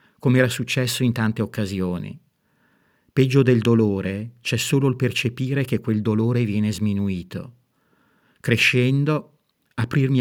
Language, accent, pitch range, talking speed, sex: Italian, native, 110-130 Hz, 120 wpm, male